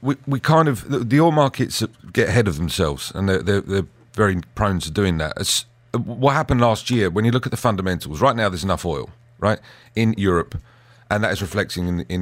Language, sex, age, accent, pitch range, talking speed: English, male, 40-59, British, 95-120 Hz, 220 wpm